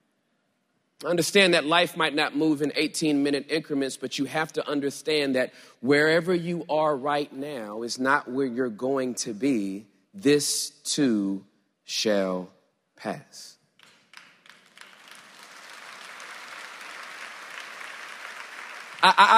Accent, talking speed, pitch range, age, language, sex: American, 100 wpm, 145-200 Hz, 30-49, English, male